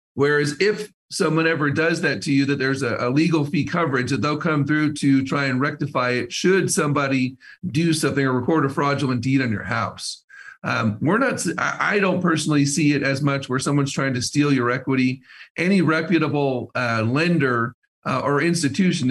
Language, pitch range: English, 130-155 Hz